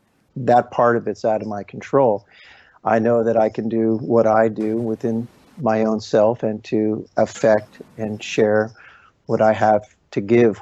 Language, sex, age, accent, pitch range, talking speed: English, male, 50-69, American, 110-120 Hz, 175 wpm